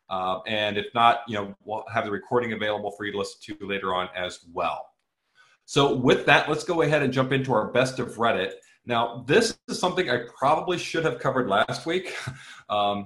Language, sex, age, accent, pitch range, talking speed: English, male, 30-49, American, 105-130 Hz, 200 wpm